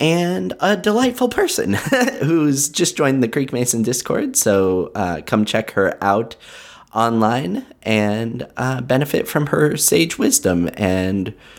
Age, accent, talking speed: 20-39, American, 135 wpm